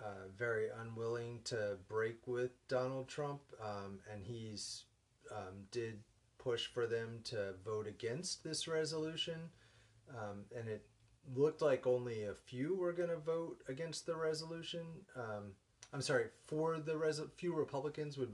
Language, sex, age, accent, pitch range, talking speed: English, male, 30-49, American, 105-130 Hz, 145 wpm